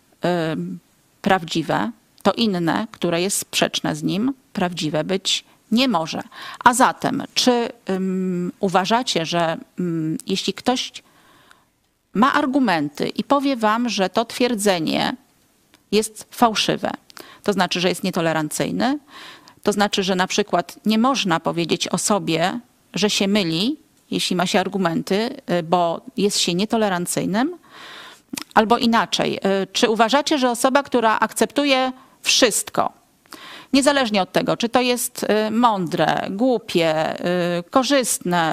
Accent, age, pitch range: native, 40-59, 185-250 Hz